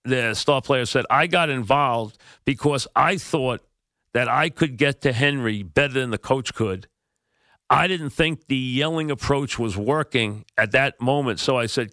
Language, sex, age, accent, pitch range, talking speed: English, male, 50-69, American, 130-170 Hz, 175 wpm